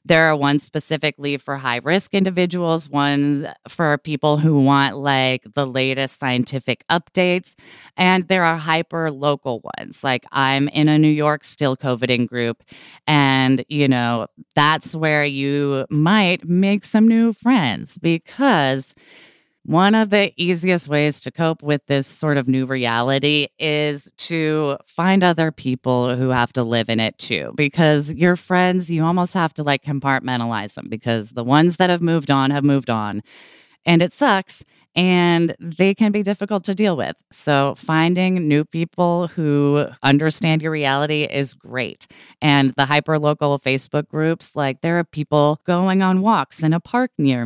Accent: American